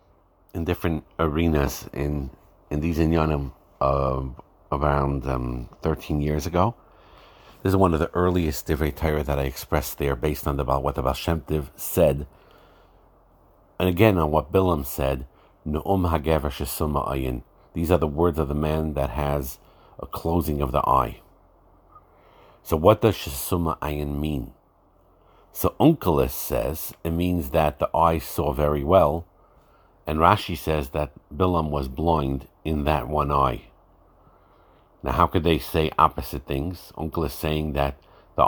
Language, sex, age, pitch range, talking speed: English, male, 50-69, 70-85 Hz, 145 wpm